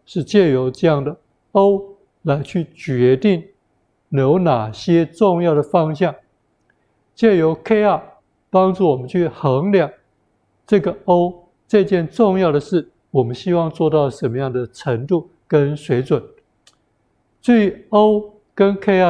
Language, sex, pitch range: Chinese, male, 140-180 Hz